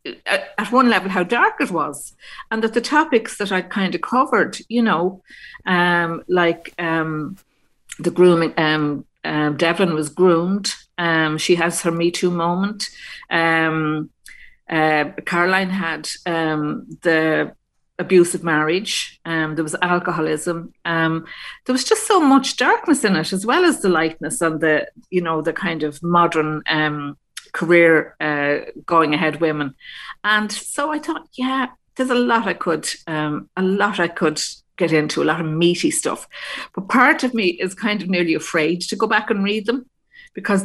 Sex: female